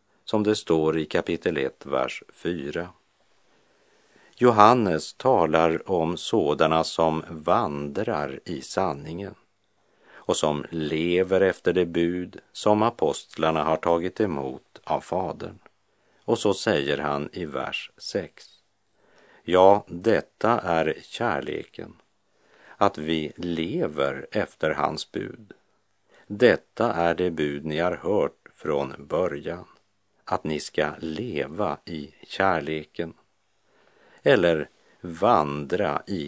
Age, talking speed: 50-69, 105 wpm